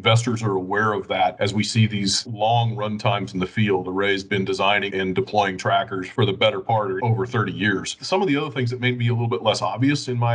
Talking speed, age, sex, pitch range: 255 wpm, 40-59, male, 105-125 Hz